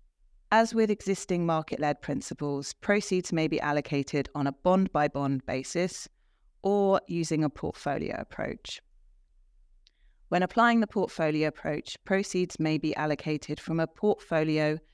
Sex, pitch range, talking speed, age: female, 145-180 Hz, 130 wpm, 30-49